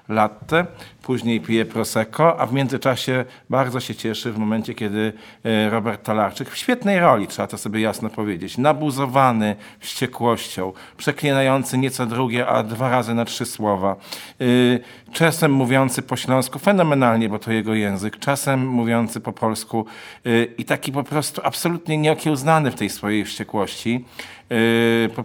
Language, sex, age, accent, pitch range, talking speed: Polish, male, 50-69, native, 115-135 Hz, 140 wpm